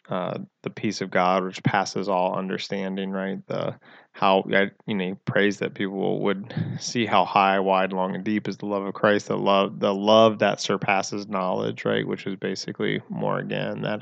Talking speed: 195 wpm